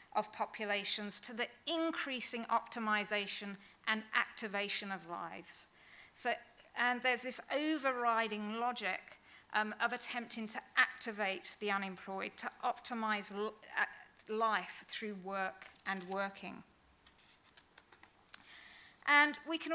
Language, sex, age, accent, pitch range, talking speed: English, female, 40-59, British, 205-240 Hz, 105 wpm